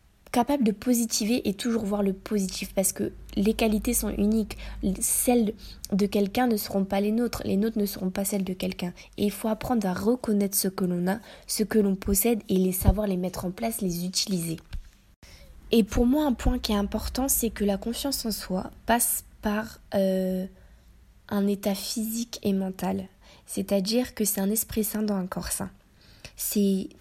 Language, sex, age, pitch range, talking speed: French, female, 20-39, 190-225 Hz, 190 wpm